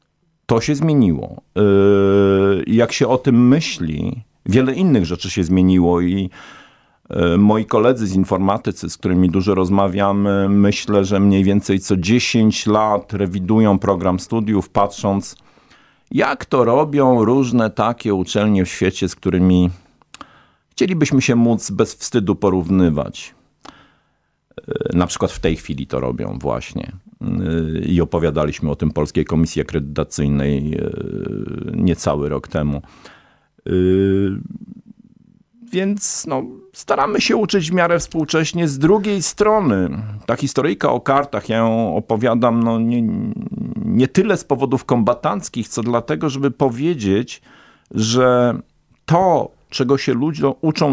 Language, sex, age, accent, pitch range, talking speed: Polish, male, 50-69, native, 95-135 Hz, 115 wpm